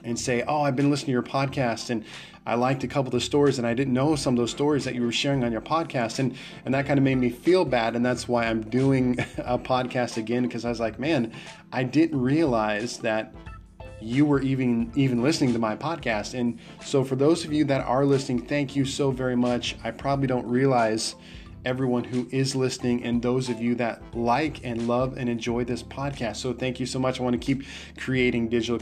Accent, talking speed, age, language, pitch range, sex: American, 230 wpm, 20-39, English, 115-135 Hz, male